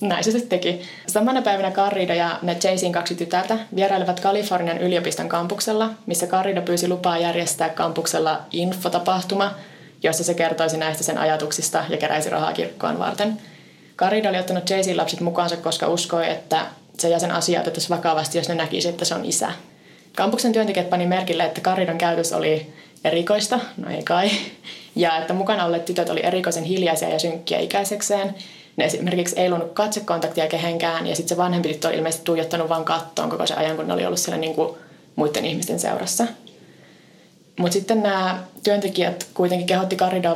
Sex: female